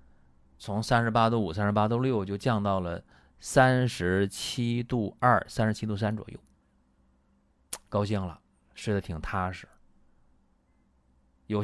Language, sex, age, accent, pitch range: Chinese, male, 20-39, native, 65-110 Hz